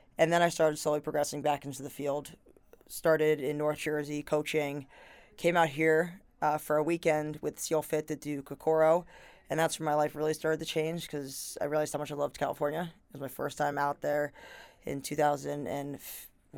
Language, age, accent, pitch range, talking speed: English, 20-39, American, 145-160 Hz, 205 wpm